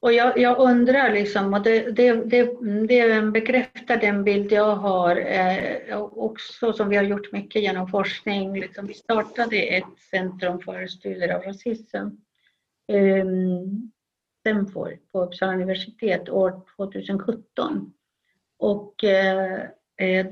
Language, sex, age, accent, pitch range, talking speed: Swedish, female, 50-69, native, 185-220 Hz, 120 wpm